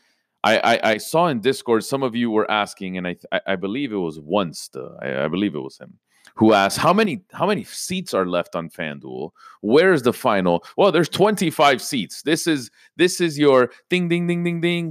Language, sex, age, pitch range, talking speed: English, male, 30-49, 100-155 Hz, 215 wpm